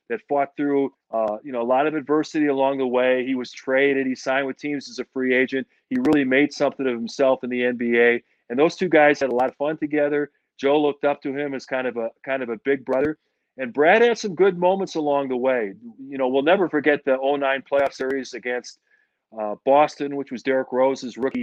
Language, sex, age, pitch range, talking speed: English, male, 40-59, 125-150 Hz, 230 wpm